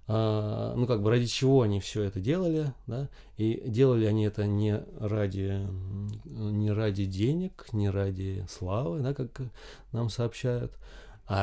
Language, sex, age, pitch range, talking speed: Russian, male, 20-39, 100-125 Hz, 145 wpm